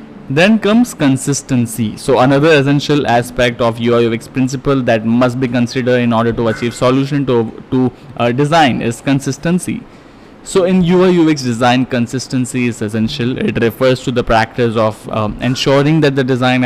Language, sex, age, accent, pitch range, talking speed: English, male, 10-29, Indian, 120-135 Hz, 160 wpm